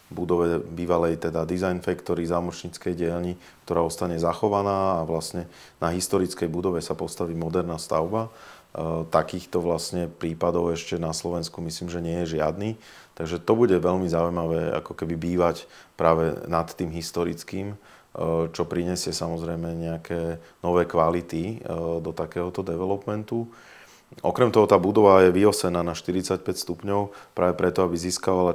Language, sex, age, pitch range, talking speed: Slovak, male, 30-49, 85-90 Hz, 130 wpm